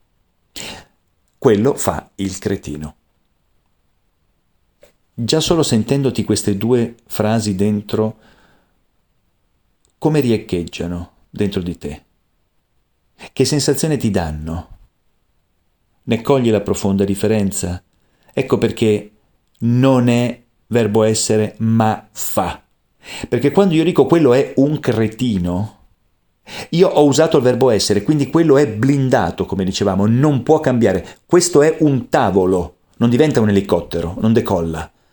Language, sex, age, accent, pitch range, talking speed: Italian, male, 40-59, native, 100-140 Hz, 115 wpm